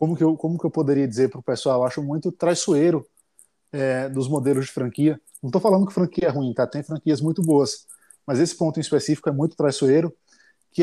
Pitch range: 135-165 Hz